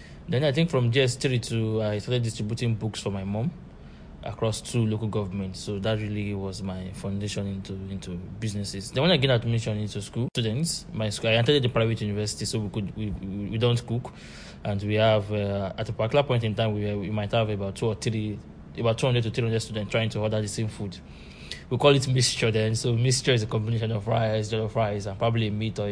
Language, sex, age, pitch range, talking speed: English, male, 20-39, 100-115 Hz, 230 wpm